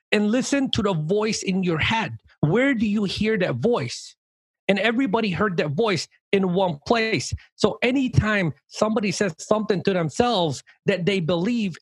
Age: 30-49